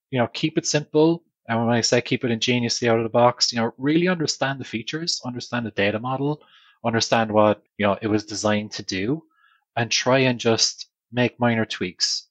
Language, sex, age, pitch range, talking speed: English, male, 20-39, 100-120 Hz, 205 wpm